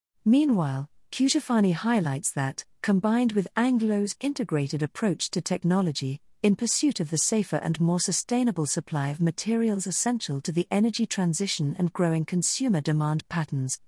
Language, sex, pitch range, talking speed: English, female, 160-215 Hz, 140 wpm